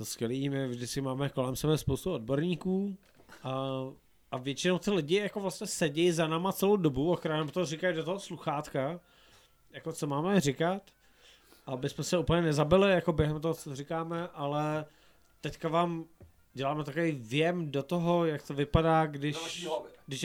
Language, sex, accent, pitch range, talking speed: Czech, male, native, 140-175 Hz, 155 wpm